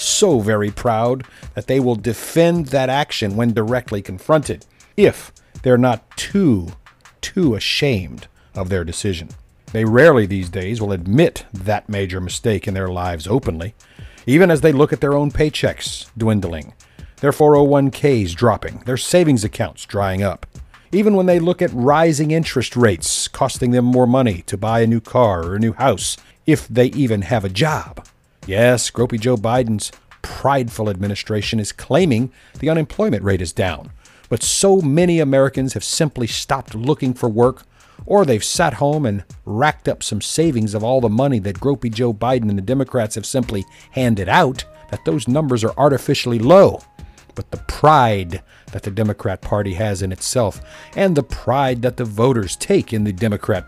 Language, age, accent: English, 50-69, American